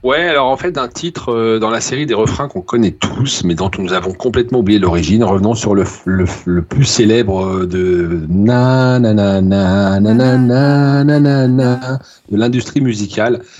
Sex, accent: male, French